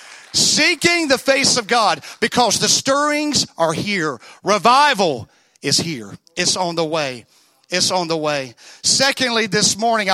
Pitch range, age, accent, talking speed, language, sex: 175-230 Hz, 40-59, American, 140 wpm, English, male